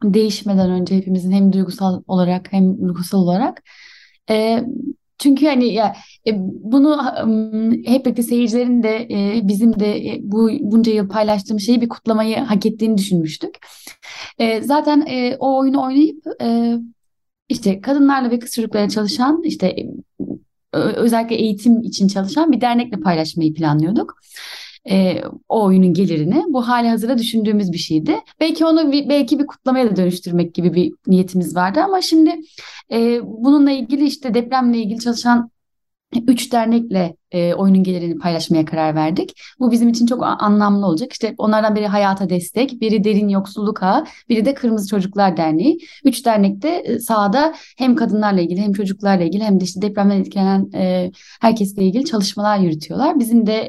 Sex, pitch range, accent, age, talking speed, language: female, 190-250 Hz, native, 10-29, 150 wpm, Turkish